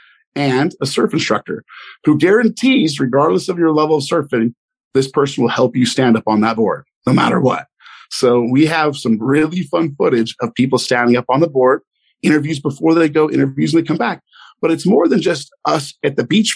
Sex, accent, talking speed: male, American, 205 wpm